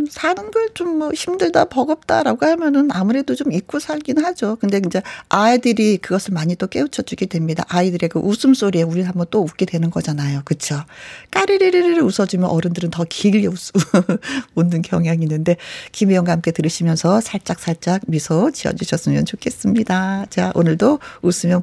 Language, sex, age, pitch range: Korean, female, 40-59, 180-280 Hz